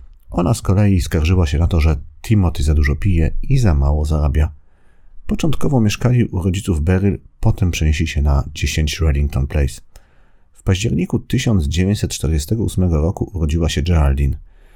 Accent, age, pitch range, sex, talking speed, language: native, 40-59, 75-95 Hz, male, 140 wpm, Polish